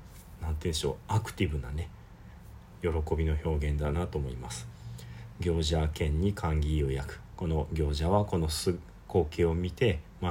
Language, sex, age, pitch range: Japanese, male, 40-59, 80-100 Hz